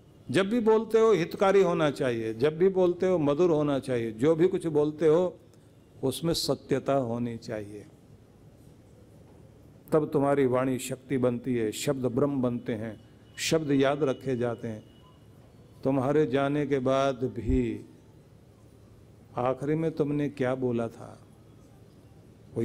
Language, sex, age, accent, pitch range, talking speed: Hindi, male, 50-69, native, 120-165 Hz, 130 wpm